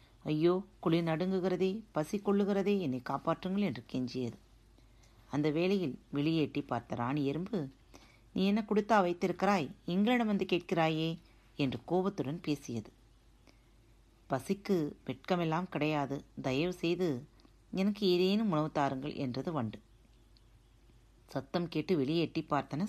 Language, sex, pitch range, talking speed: Tamil, female, 120-180 Hz, 105 wpm